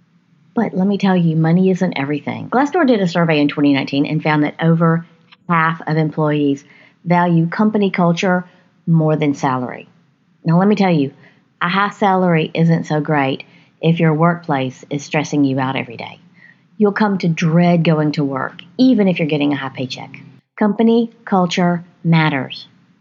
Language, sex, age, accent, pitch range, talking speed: English, female, 40-59, American, 160-205 Hz, 165 wpm